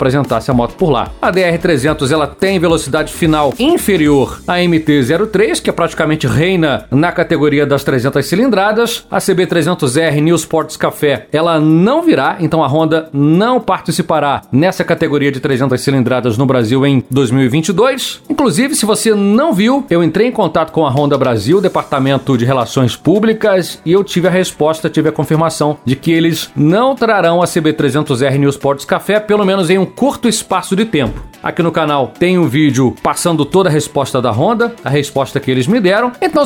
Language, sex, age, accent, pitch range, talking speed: Portuguese, male, 40-59, Brazilian, 145-195 Hz, 175 wpm